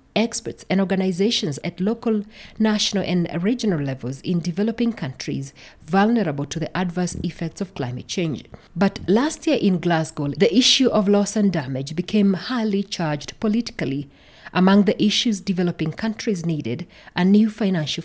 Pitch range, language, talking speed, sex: 160-210 Hz, English, 145 wpm, female